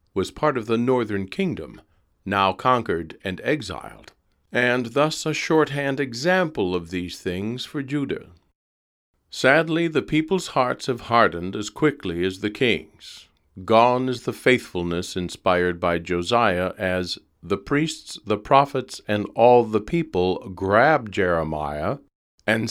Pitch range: 95-130 Hz